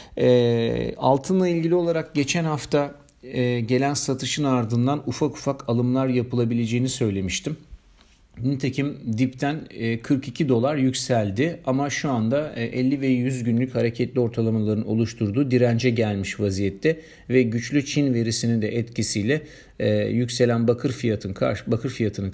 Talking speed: 115 wpm